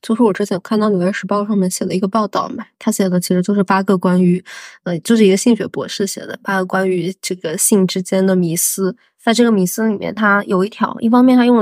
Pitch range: 190-215 Hz